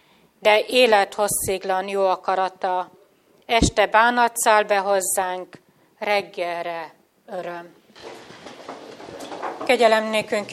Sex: female